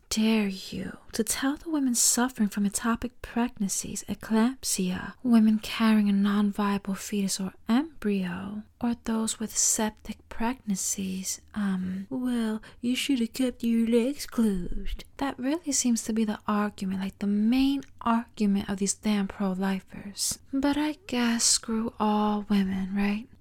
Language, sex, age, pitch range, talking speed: English, female, 30-49, 200-240 Hz, 135 wpm